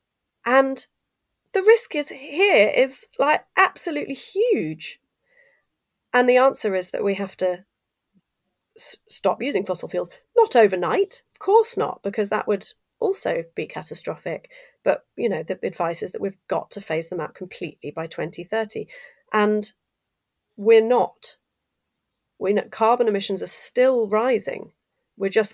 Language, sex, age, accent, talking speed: English, female, 30-49, British, 145 wpm